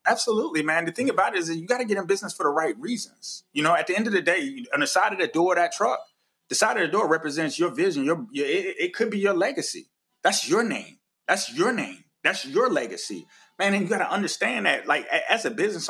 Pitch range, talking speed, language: 155-240 Hz, 270 wpm, English